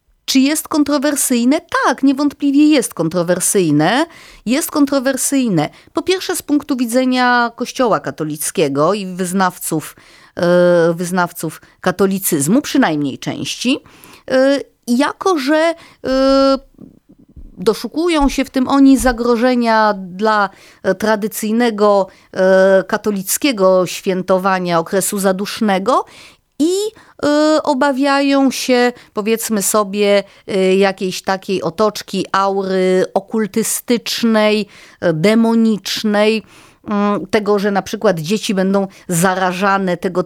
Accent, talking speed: native, 80 wpm